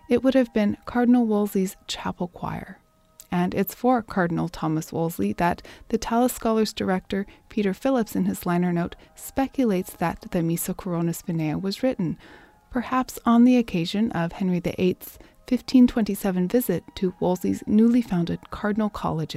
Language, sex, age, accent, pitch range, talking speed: English, female, 30-49, American, 175-230 Hz, 150 wpm